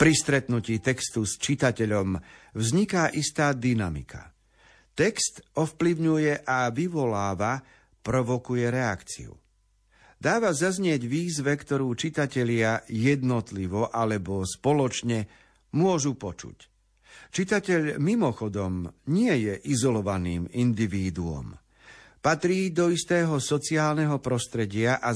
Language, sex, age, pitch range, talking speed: Slovak, male, 50-69, 110-145 Hz, 85 wpm